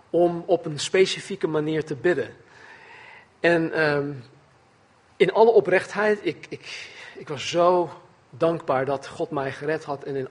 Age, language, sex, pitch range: 40-59, Dutch, male, 140-185 Hz